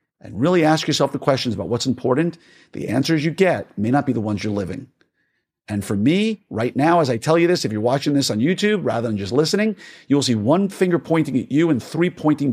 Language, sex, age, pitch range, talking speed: English, male, 50-69, 110-150 Hz, 240 wpm